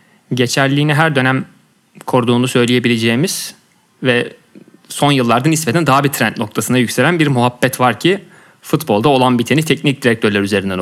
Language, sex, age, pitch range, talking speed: Turkish, male, 30-49, 115-140 Hz, 135 wpm